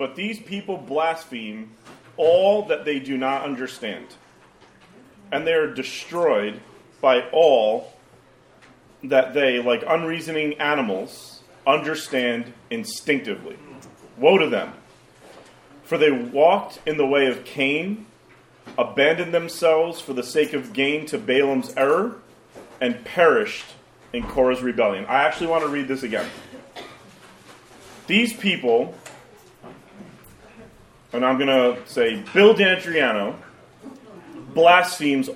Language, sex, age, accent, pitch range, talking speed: English, male, 40-59, American, 130-170 Hz, 110 wpm